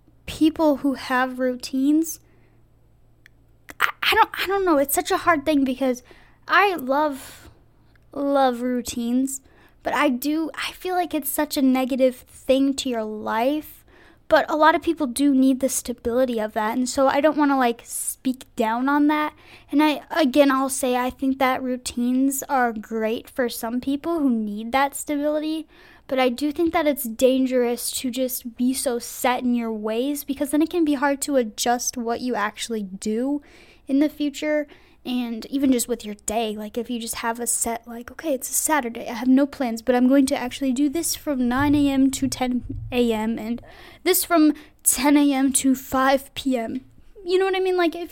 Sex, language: female, English